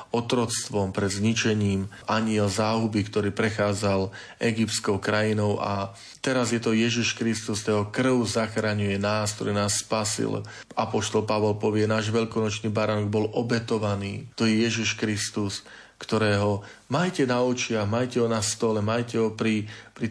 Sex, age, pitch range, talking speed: male, 40-59, 105-115 Hz, 140 wpm